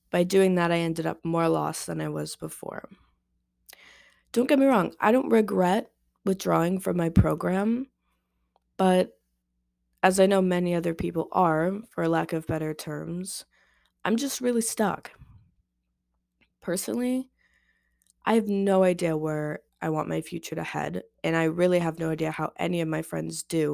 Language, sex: English, female